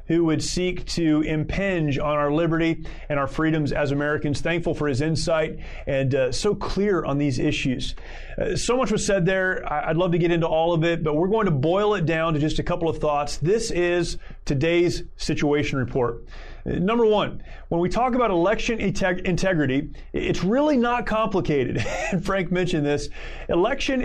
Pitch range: 155-190 Hz